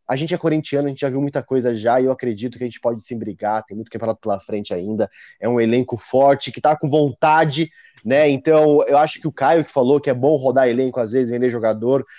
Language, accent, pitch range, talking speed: Portuguese, Brazilian, 125-150 Hz, 255 wpm